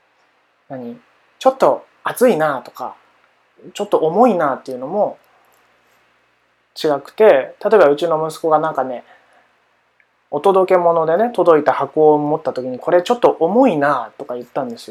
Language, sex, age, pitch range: Japanese, male, 20-39, 140-220 Hz